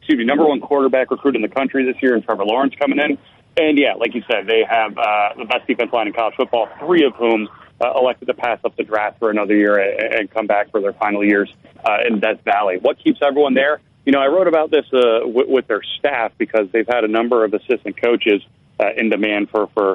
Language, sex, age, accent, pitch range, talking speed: English, male, 30-49, American, 110-145 Hz, 245 wpm